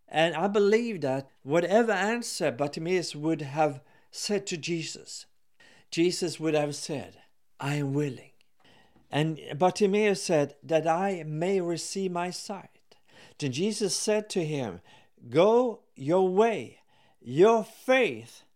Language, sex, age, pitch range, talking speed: English, male, 50-69, 145-195 Hz, 125 wpm